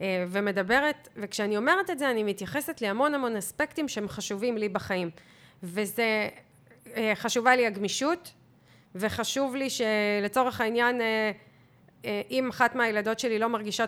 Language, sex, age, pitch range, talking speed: Hebrew, female, 30-49, 210-260 Hz, 120 wpm